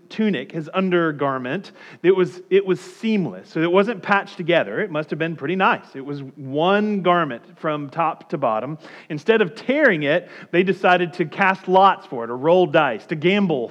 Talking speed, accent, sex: 190 wpm, American, male